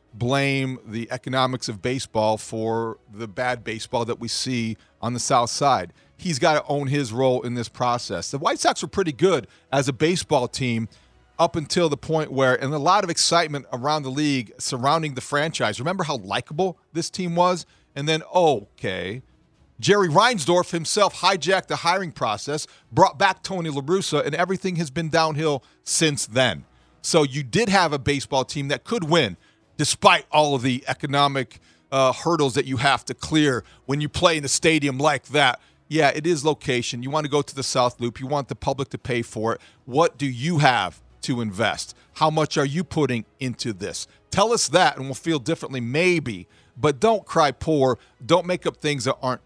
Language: English